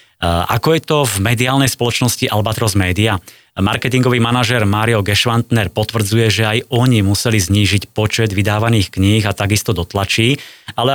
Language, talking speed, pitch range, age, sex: Slovak, 135 wpm, 100-115 Hz, 30-49, male